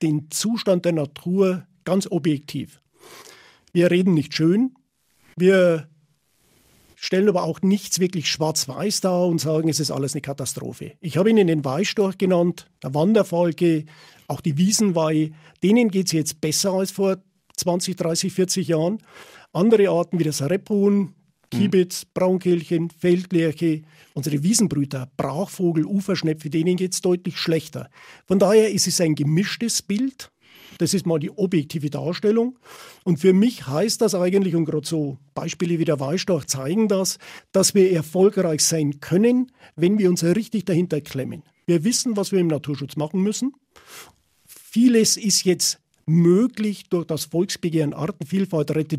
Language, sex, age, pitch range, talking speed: German, male, 50-69, 155-195 Hz, 145 wpm